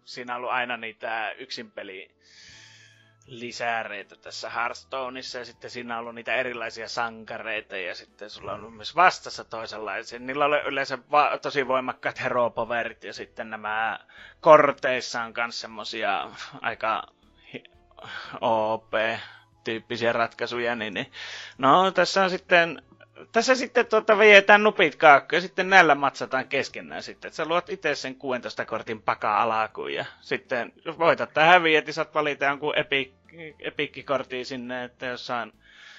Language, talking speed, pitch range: Finnish, 135 wpm, 115-150 Hz